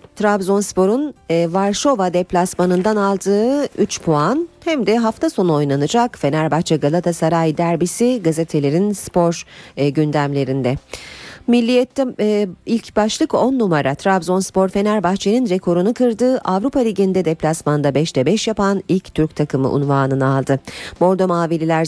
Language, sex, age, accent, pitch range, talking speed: Turkish, female, 40-59, native, 150-215 Hz, 105 wpm